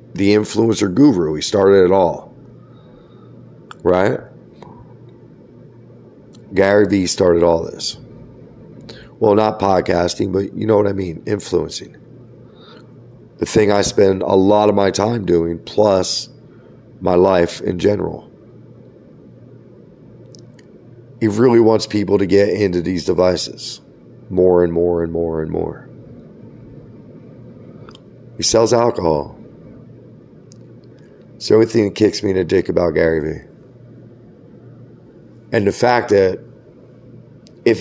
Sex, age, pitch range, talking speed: male, 40-59, 90-110 Hz, 120 wpm